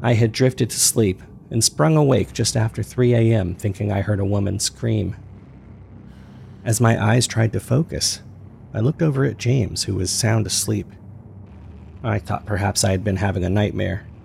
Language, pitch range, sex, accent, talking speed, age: English, 100-115 Hz, male, American, 175 wpm, 40-59